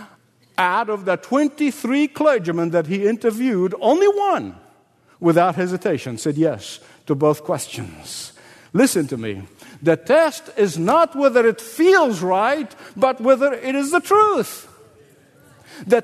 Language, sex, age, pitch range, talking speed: English, male, 50-69, 165-250 Hz, 130 wpm